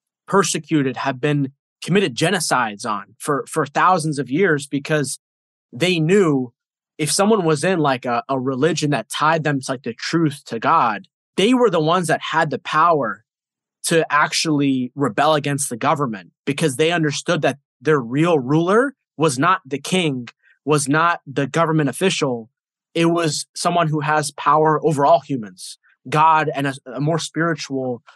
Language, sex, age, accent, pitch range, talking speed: English, male, 20-39, American, 140-170 Hz, 160 wpm